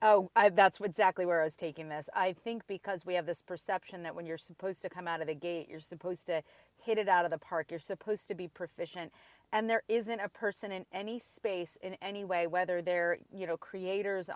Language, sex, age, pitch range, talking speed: English, female, 30-49, 180-220 Hz, 235 wpm